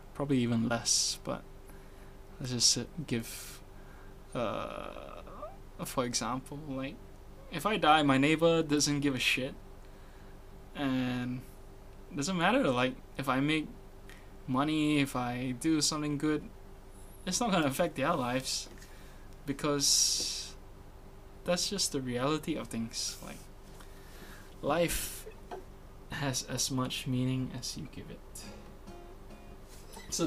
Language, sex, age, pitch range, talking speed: English, male, 20-39, 100-140 Hz, 115 wpm